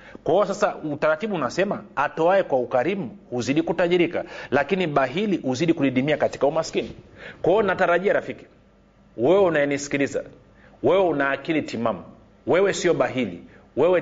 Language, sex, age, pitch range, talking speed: Swahili, male, 40-59, 145-195 Hz, 115 wpm